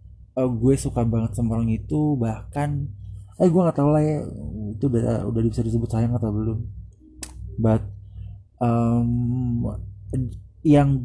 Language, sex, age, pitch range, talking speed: English, male, 20-39, 100-125 Hz, 135 wpm